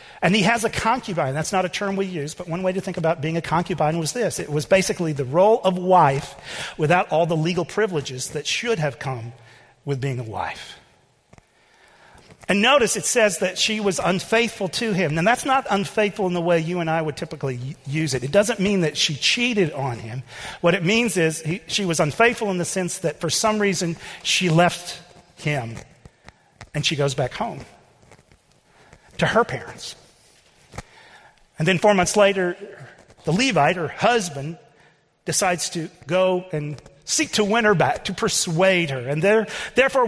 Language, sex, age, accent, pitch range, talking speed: English, male, 40-59, American, 160-215 Hz, 185 wpm